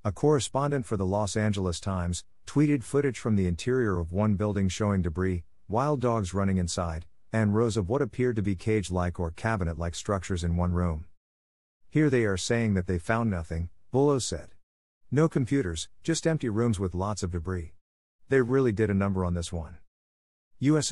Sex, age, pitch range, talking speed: male, 50-69, 90-115 Hz, 185 wpm